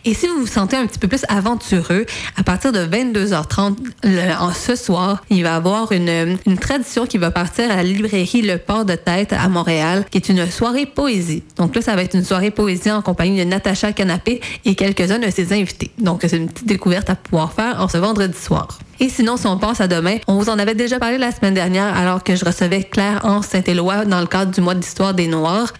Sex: female